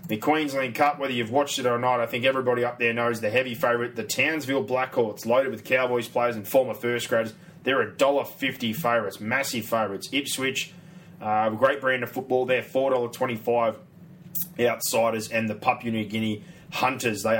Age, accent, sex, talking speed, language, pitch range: 20-39, Australian, male, 175 wpm, English, 120-140 Hz